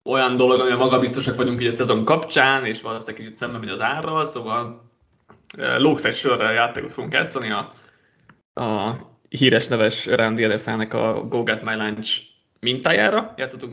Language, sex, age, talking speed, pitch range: Hungarian, male, 20-39, 165 wpm, 110-135 Hz